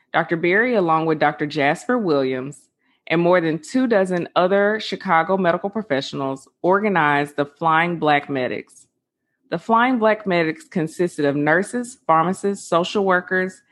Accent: American